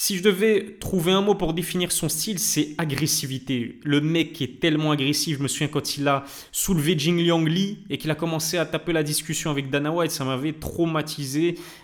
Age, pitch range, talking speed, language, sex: 20-39, 150-185 Hz, 215 wpm, French, male